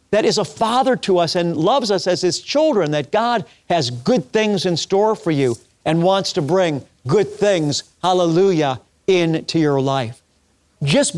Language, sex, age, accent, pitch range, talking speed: English, male, 50-69, American, 155-215 Hz, 170 wpm